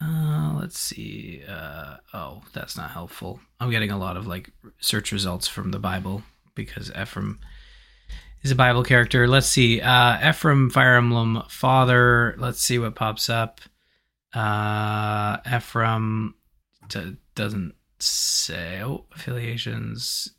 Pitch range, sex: 100-125 Hz, male